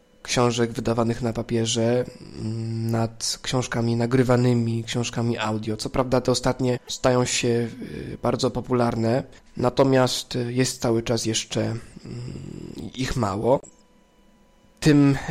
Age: 20-39